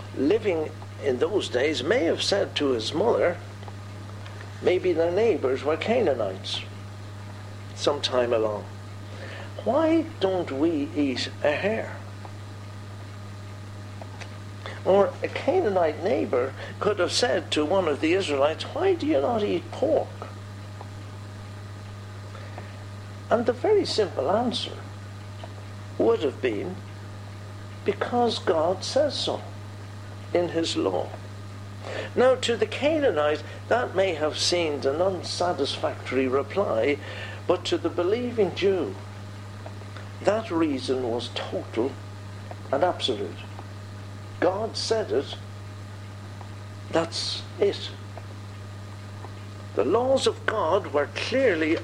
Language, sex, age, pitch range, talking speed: English, male, 60-79, 100-125 Hz, 105 wpm